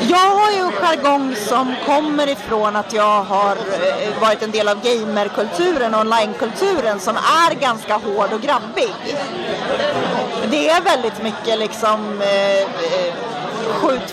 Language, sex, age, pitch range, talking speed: Swedish, female, 30-49, 215-300 Hz, 125 wpm